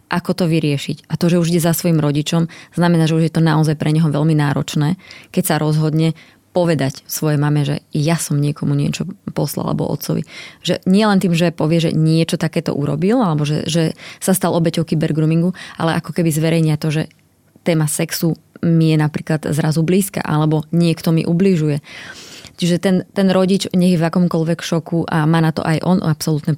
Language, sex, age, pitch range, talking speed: Slovak, female, 20-39, 155-175 Hz, 185 wpm